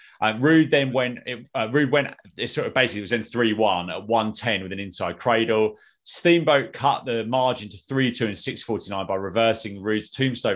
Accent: British